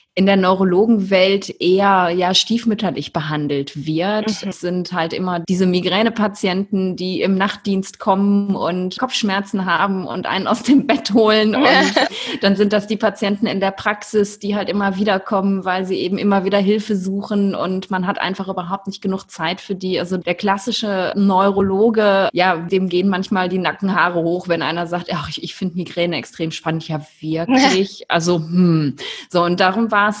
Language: German